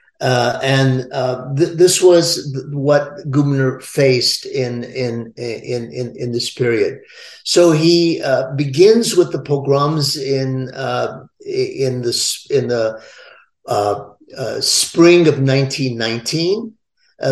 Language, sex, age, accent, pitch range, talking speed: English, male, 50-69, American, 130-165 Hz, 120 wpm